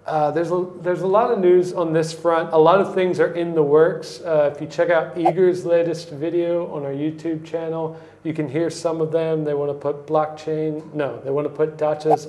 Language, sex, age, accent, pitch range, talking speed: English, male, 40-59, American, 135-165 Hz, 230 wpm